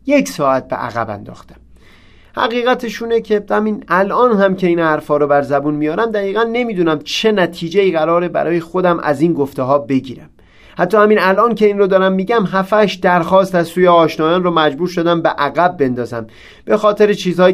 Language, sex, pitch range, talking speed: Persian, male, 150-195 Hz, 180 wpm